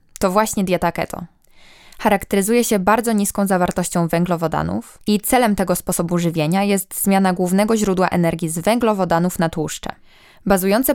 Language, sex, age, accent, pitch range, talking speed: Polish, female, 20-39, native, 175-210 Hz, 135 wpm